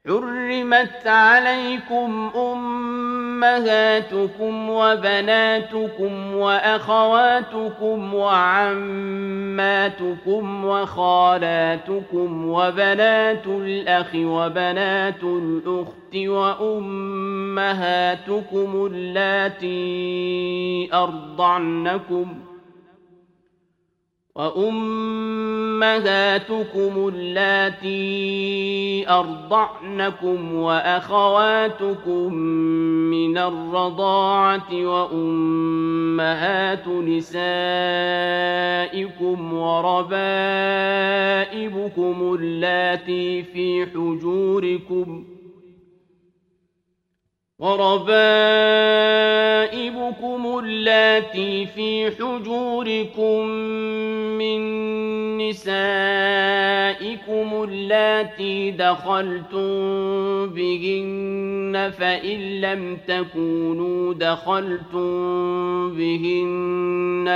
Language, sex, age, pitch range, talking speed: Urdu, male, 50-69, 180-215 Hz, 40 wpm